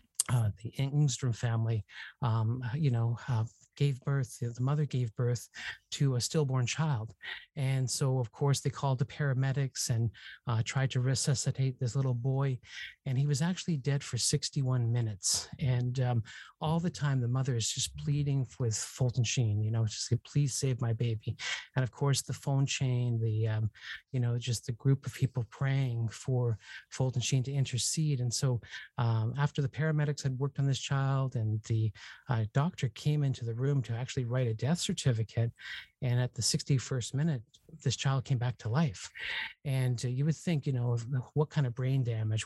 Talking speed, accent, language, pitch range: 185 wpm, American, English, 120-140 Hz